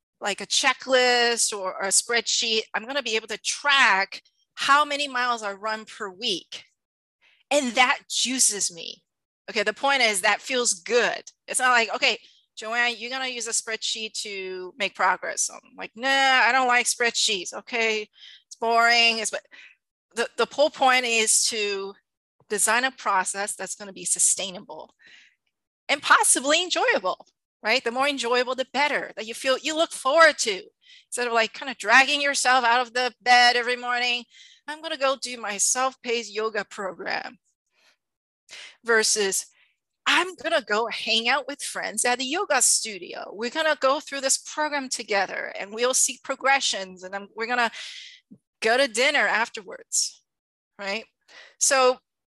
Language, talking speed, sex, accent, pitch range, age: English, 165 wpm, female, American, 220-275 Hz, 30-49